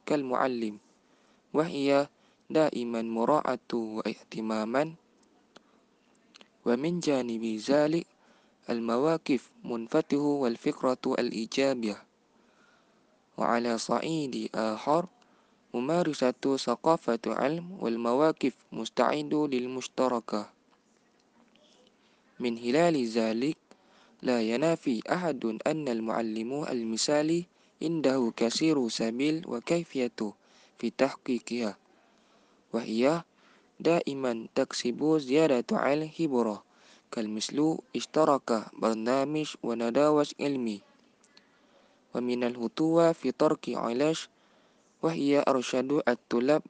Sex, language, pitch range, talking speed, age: male, Malay, 115-155 Hz, 75 wpm, 20-39